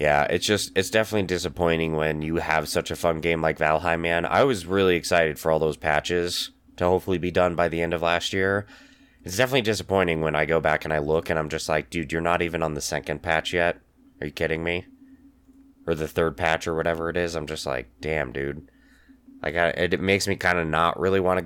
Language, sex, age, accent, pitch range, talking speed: English, male, 20-39, American, 80-90 Hz, 240 wpm